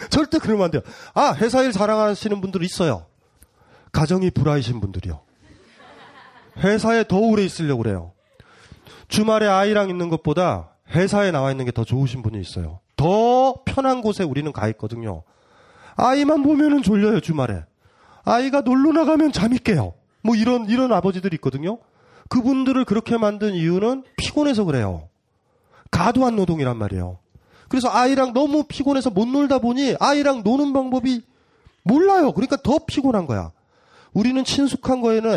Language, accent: Korean, native